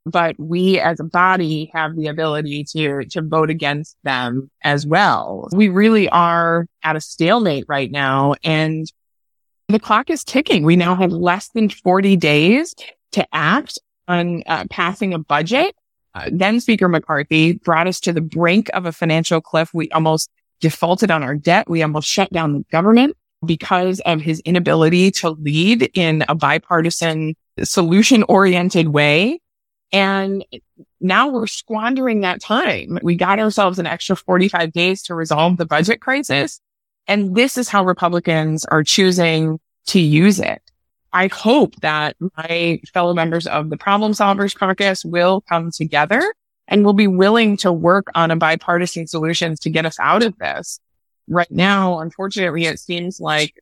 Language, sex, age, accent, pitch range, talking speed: English, female, 20-39, American, 160-195 Hz, 160 wpm